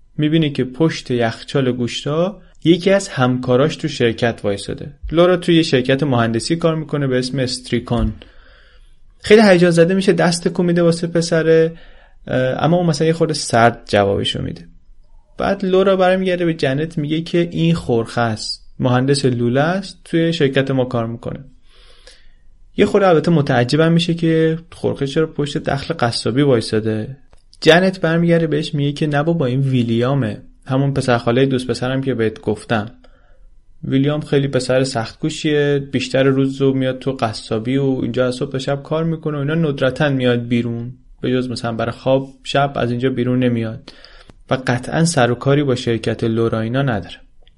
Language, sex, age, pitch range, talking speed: Persian, male, 30-49, 120-160 Hz, 160 wpm